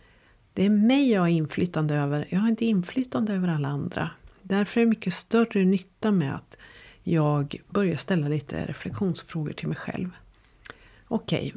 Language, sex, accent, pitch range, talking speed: Swedish, female, native, 160-205 Hz, 160 wpm